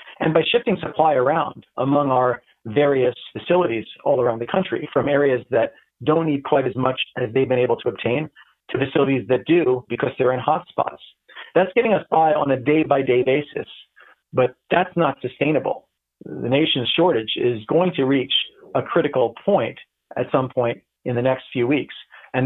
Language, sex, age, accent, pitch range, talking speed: English, male, 40-59, American, 120-145 Hz, 180 wpm